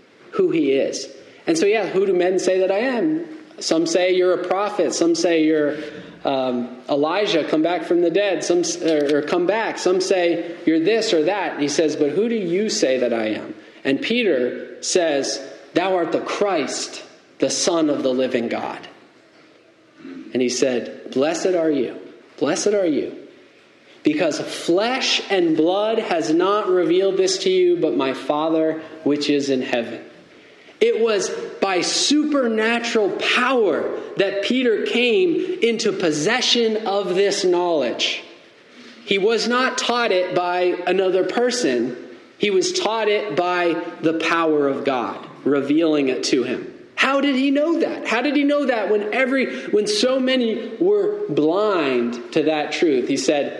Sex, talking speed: male, 160 wpm